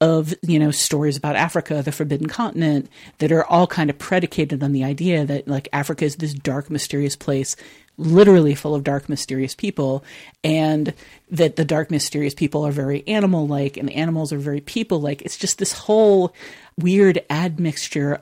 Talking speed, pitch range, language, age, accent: 180 wpm, 145-175 Hz, English, 40-59, American